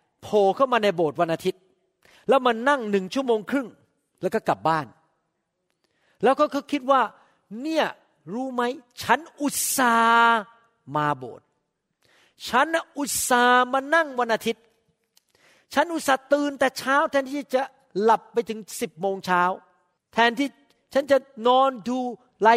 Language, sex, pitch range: Thai, male, 185-265 Hz